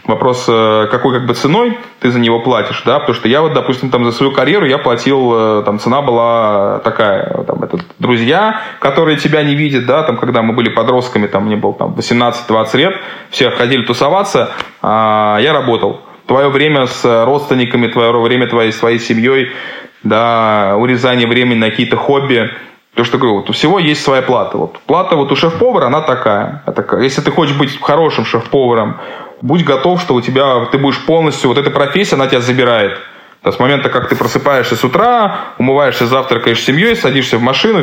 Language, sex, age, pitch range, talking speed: Russian, male, 20-39, 120-145 Hz, 175 wpm